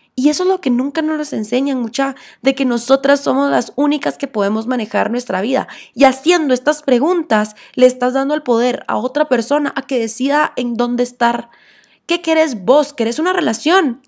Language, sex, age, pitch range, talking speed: Spanish, female, 20-39, 220-275 Hz, 190 wpm